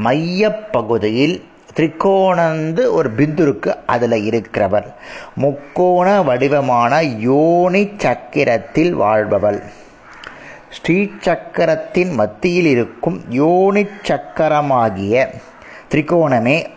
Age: 30-49